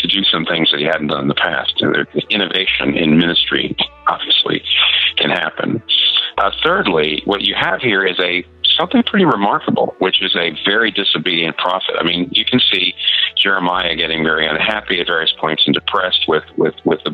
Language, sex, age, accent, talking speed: English, male, 50-69, American, 190 wpm